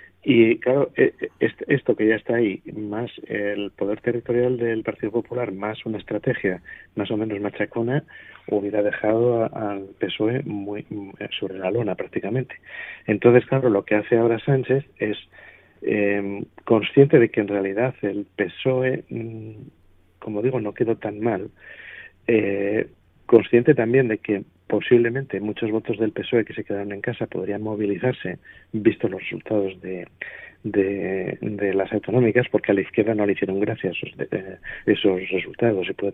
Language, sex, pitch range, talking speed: Spanish, male, 100-120 Hz, 145 wpm